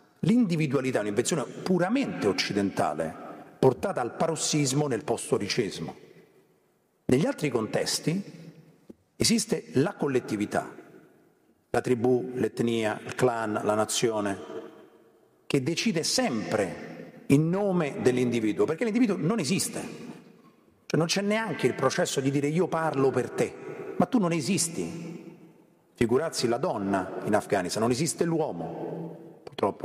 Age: 40-59